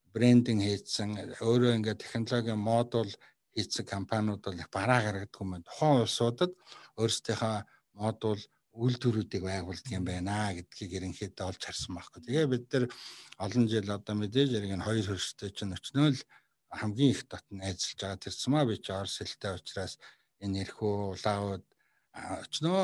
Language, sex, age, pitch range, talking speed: Russian, male, 60-79, 95-115 Hz, 80 wpm